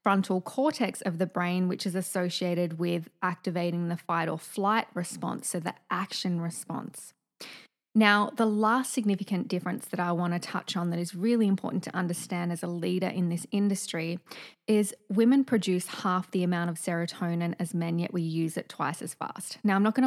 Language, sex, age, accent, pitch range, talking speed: English, female, 20-39, Australian, 175-215 Hz, 190 wpm